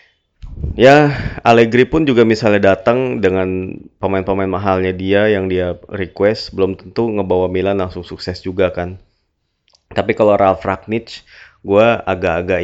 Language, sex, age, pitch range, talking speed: Indonesian, male, 20-39, 95-115 Hz, 130 wpm